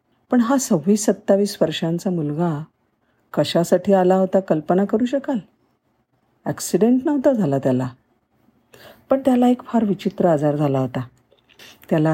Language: Marathi